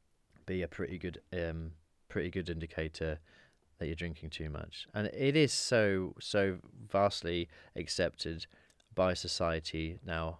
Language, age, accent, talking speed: English, 30-49, British, 135 wpm